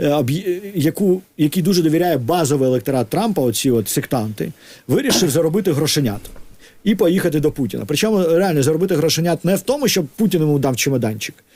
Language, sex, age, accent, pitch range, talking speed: Ukrainian, male, 50-69, native, 150-205 Hz, 150 wpm